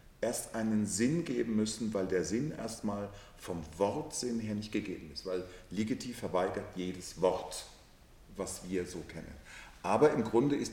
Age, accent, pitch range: 40-59, German, 100-120 Hz